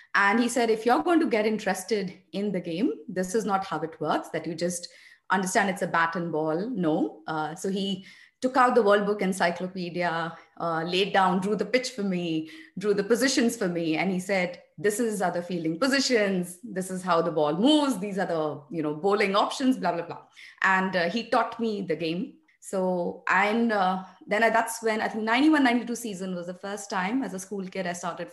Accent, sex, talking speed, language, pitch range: Indian, female, 210 wpm, English, 175-230 Hz